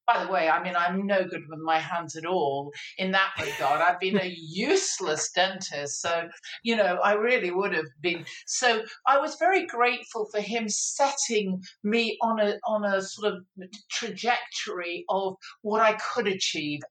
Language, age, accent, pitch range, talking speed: English, 50-69, British, 180-230 Hz, 175 wpm